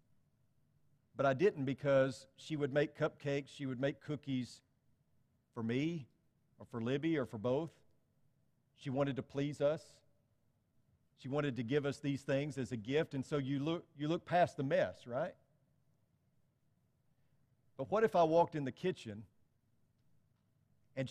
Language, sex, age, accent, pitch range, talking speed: English, male, 40-59, American, 130-155 Hz, 150 wpm